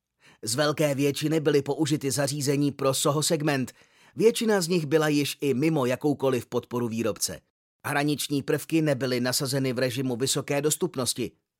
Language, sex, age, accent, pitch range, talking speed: Czech, male, 30-49, native, 135-165 Hz, 140 wpm